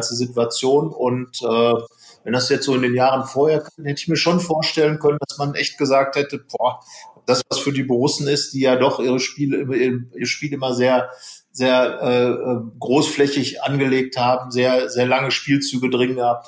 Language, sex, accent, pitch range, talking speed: German, male, German, 120-140 Hz, 180 wpm